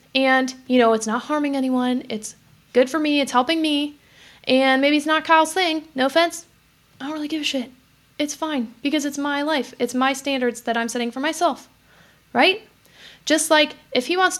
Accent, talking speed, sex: American, 200 wpm, female